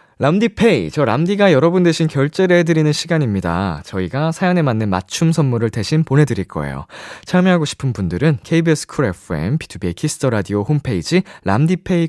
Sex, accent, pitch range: male, native, 105-175 Hz